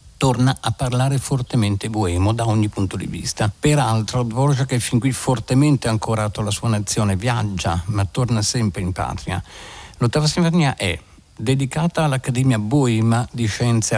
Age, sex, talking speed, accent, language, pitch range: 50-69, male, 145 wpm, native, Italian, 95-120 Hz